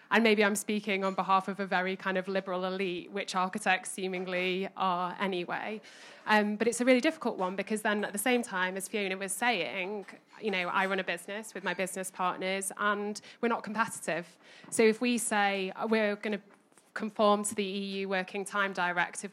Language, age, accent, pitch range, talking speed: English, 20-39, British, 190-225 Hz, 195 wpm